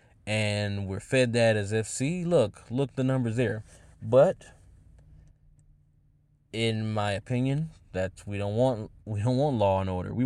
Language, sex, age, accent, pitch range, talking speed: English, male, 20-39, American, 95-115 Hz, 160 wpm